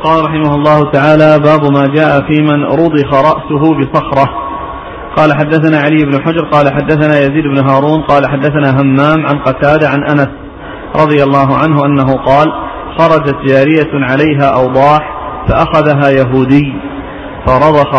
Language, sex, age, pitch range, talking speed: Arabic, male, 40-59, 135-155 Hz, 135 wpm